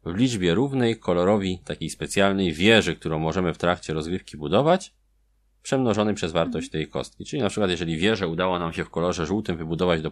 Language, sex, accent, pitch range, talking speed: Polish, male, native, 80-100 Hz, 185 wpm